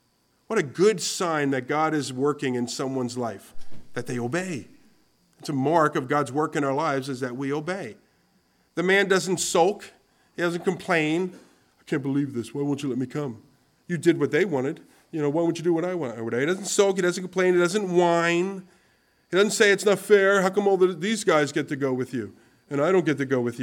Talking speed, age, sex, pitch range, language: 230 wpm, 50-69, male, 140-185 Hz, English